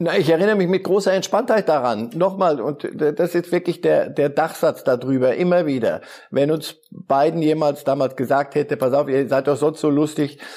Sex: male